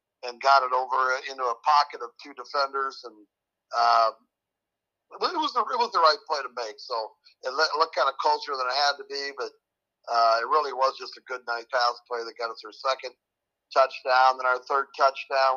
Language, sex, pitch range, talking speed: English, male, 120-140 Hz, 210 wpm